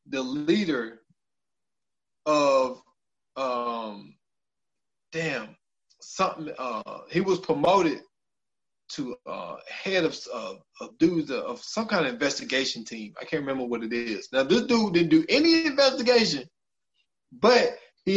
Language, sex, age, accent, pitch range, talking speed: English, male, 20-39, American, 140-205 Hz, 130 wpm